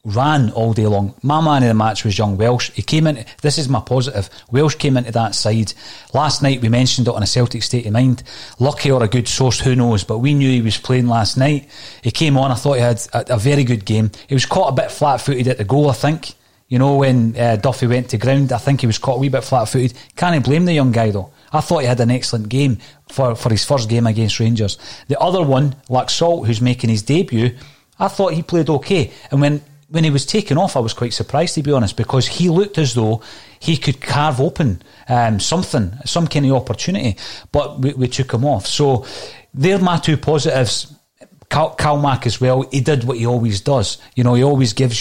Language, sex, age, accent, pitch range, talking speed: English, male, 30-49, British, 115-145 Hz, 240 wpm